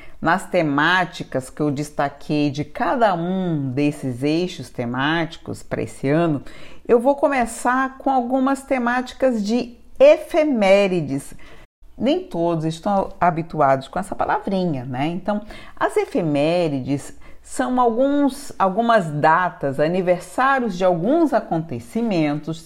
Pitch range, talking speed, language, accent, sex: 155-235 Hz, 105 wpm, Portuguese, Brazilian, female